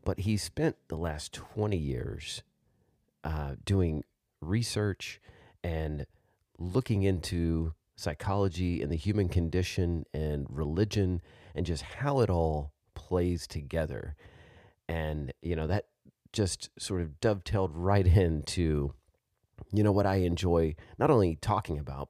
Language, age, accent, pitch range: English, 30-49, American, 80-100 Hz